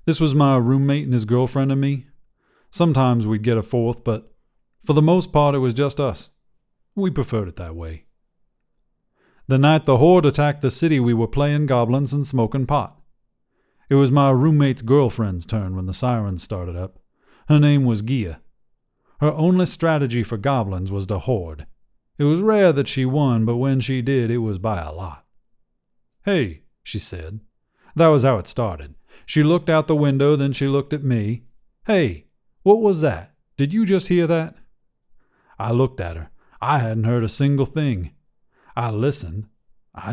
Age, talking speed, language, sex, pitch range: 40-59, 180 wpm, English, male, 110-145 Hz